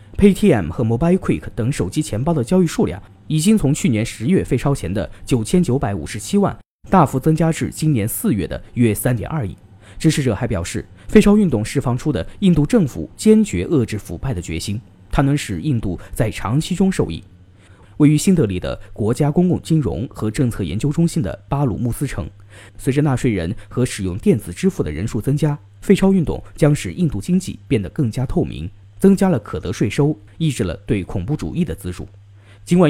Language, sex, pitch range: Chinese, male, 100-155 Hz